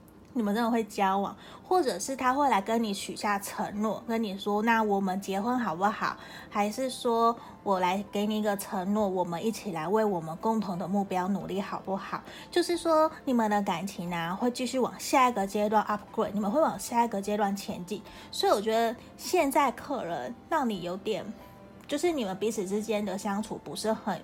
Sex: female